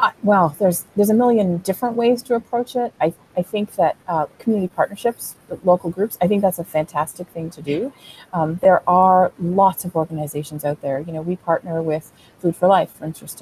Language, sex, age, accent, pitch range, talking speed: English, female, 30-49, American, 165-200 Hz, 205 wpm